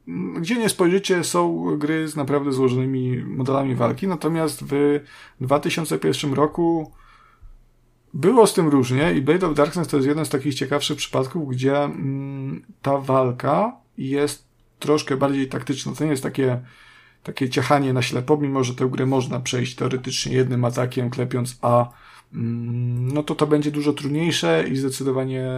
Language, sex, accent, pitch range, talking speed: Polish, male, native, 130-155 Hz, 150 wpm